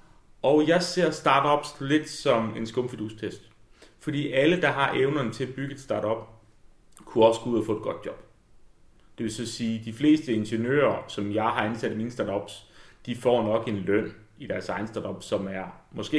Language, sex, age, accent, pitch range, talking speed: Danish, male, 30-49, native, 110-145 Hz, 200 wpm